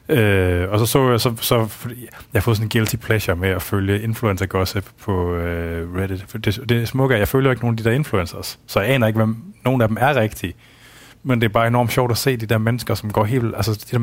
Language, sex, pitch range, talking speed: Danish, male, 105-125 Hz, 265 wpm